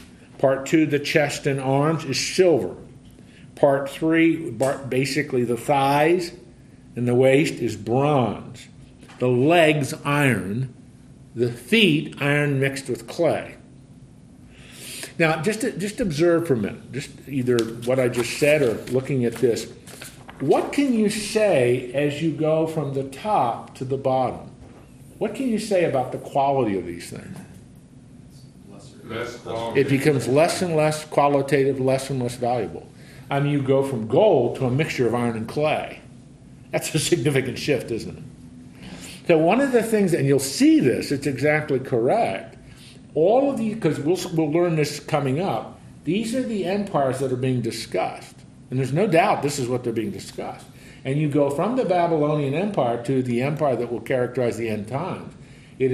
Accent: American